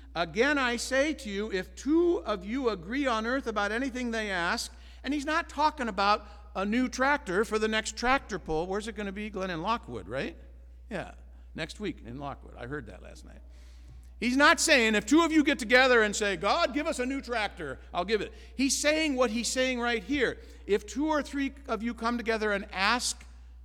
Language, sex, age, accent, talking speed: English, male, 50-69, American, 215 wpm